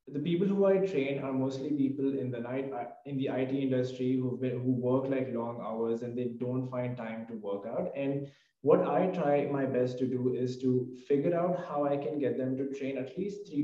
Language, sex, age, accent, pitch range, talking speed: English, male, 20-39, Indian, 130-155 Hz, 225 wpm